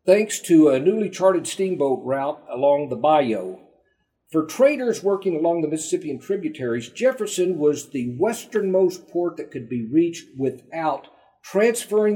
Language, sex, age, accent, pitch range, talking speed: English, male, 50-69, American, 130-195 Hz, 140 wpm